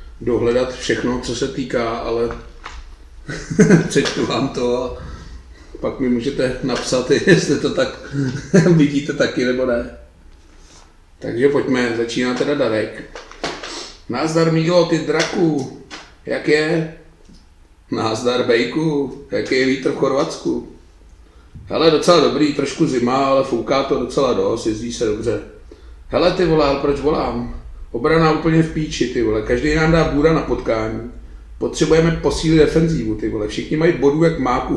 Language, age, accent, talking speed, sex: Czech, 30-49, native, 135 wpm, male